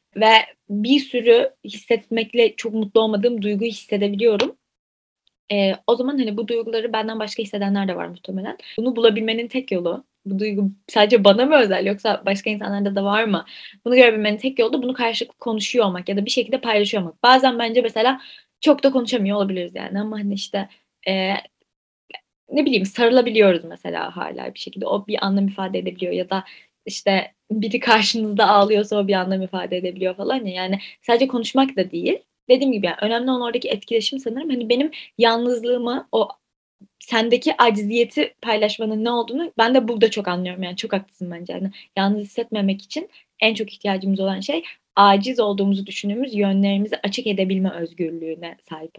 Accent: native